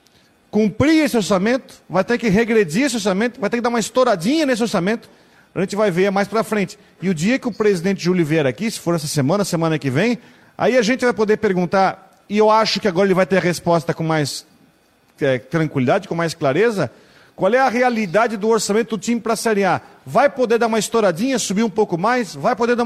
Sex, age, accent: male, 40-59, Brazilian